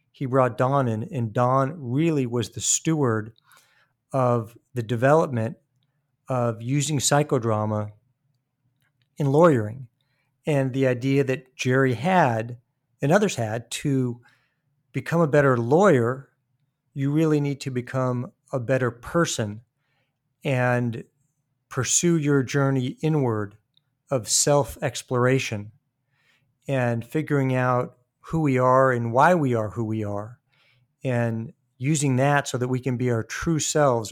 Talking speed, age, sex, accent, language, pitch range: 125 wpm, 50-69, male, American, English, 120-140 Hz